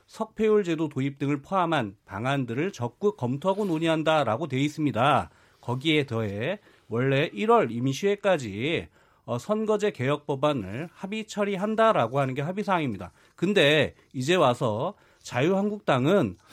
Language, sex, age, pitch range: Korean, male, 40-59, 130-205 Hz